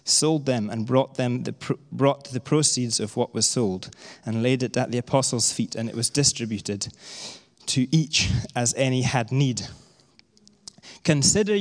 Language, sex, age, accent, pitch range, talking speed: English, male, 20-39, British, 125-160 Hz, 160 wpm